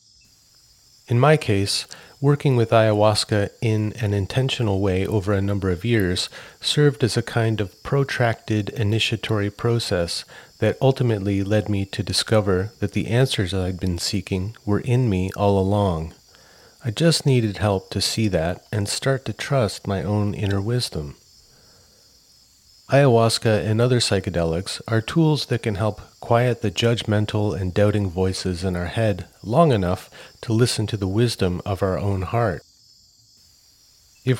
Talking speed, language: 150 wpm, English